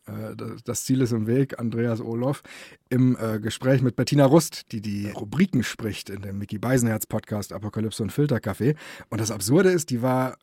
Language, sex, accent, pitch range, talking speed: German, male, German, 125-170 Hz, 165 wpm